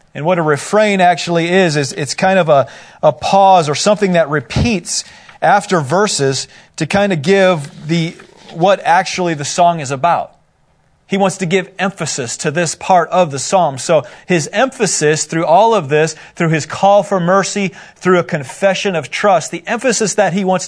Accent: American